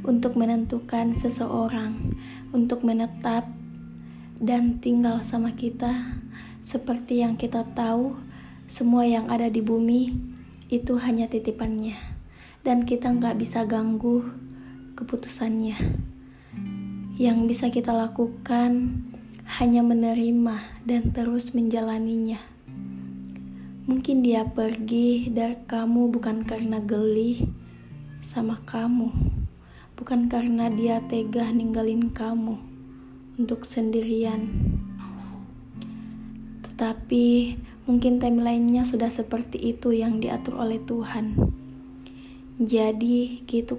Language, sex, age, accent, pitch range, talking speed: Indonesian, female, 20-39, native, 220-240 Hz, 90 wpm